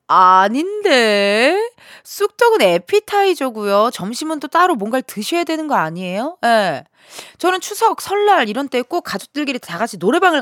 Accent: native